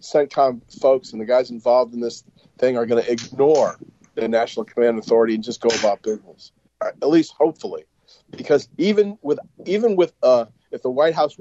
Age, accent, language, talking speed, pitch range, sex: 40-59, American, English, 185 wpm, 120-145 Hz, male